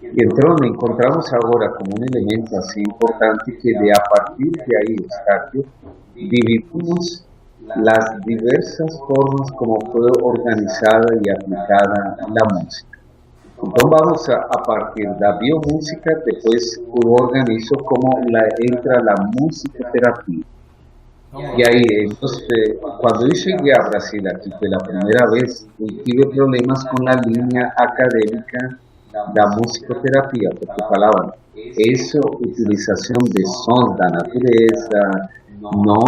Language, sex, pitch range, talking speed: Portuguese, male, 105-125 Hz, 125 wpm